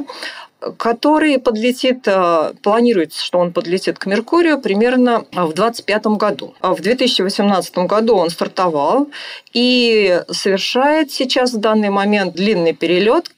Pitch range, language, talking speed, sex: 185-250 Hz, Russian, 110 wpm, female